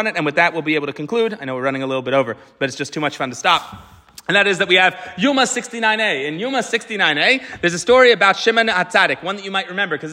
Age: 30-49